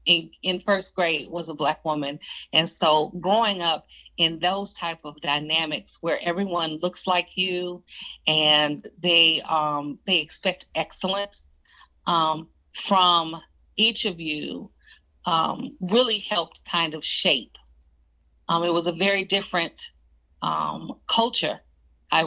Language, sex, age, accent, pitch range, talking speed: English, female, 40-59, American, 150-180 Hz, 130 wpm